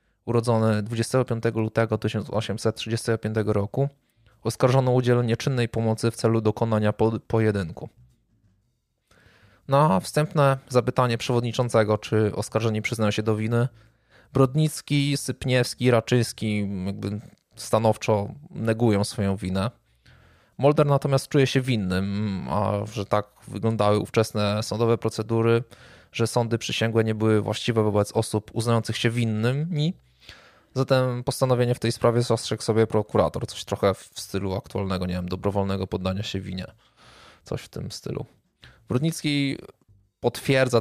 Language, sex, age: Polish, male, 20-39